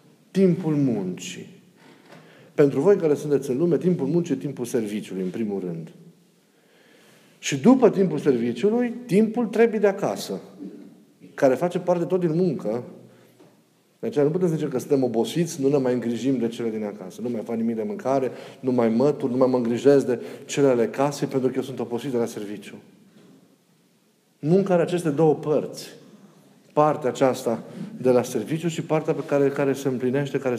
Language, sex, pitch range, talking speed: Romanian, male, 130-185 Hz, 175 wpm